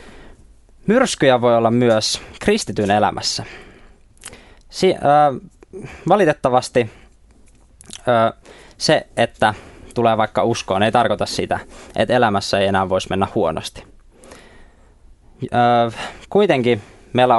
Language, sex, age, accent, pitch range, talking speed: Finnish, male, 20-39, native, 100-125 Hz, 95 wpm